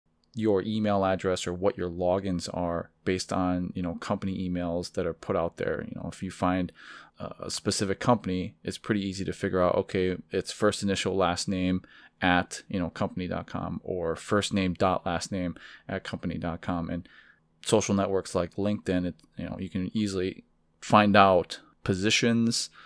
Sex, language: male, English